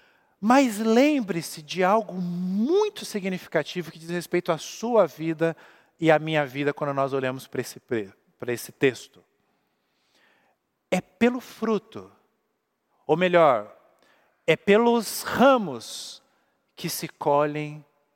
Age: 50-69